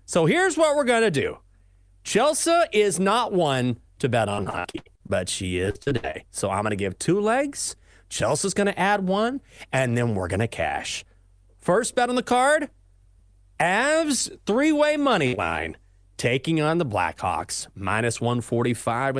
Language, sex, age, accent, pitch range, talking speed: English, male, 30-49, American, 105-155 Hz, 165 wpm